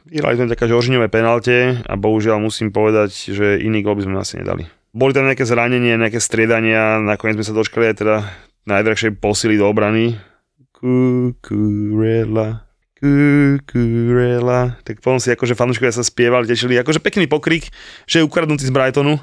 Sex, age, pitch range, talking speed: male, 20-39, 105-125 Hz, 160 wpm